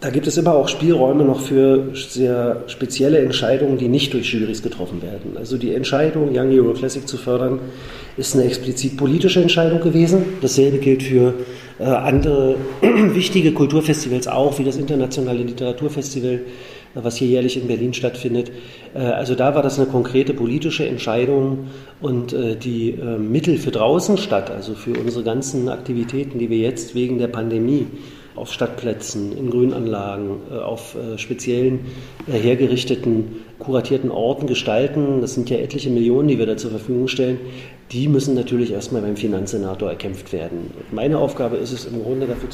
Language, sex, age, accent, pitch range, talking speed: German, male, 40-59, German, 115-135 Hz, 160 wpm